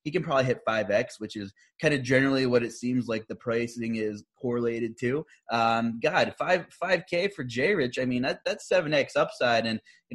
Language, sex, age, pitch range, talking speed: English, male, 20-39, 110-140 Hz, 200 wpm